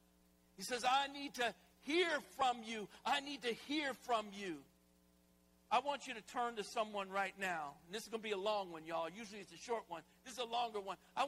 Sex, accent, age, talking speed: male, American, 60-79, 230 wpm